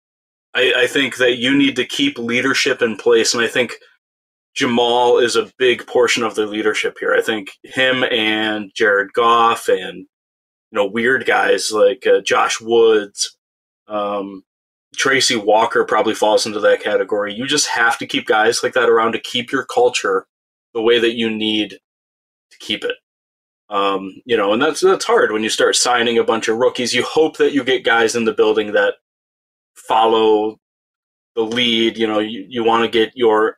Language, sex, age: English, male, 20-39